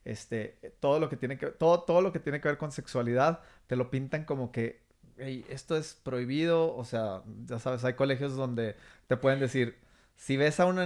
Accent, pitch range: Mexican, 135-170 Hz